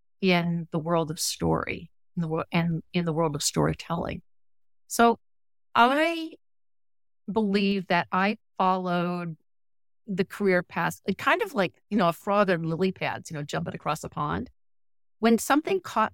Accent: American